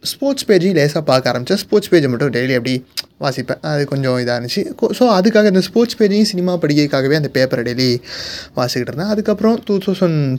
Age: 20-39